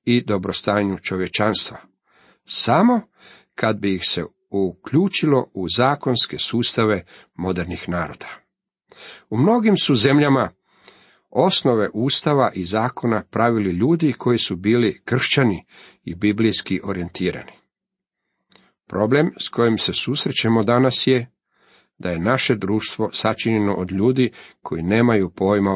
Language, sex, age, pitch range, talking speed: Croatian, male, 40-59, 100-135 Hz, 110 wpm